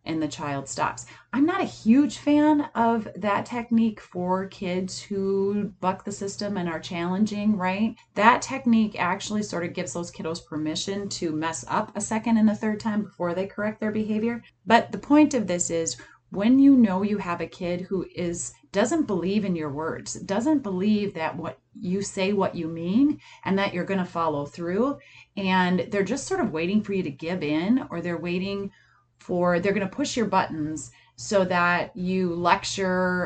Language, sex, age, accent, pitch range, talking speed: English, female, 30-49, American, 165-215 Hz, 190 wpm